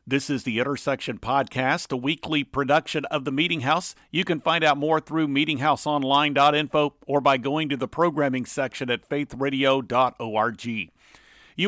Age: 50-69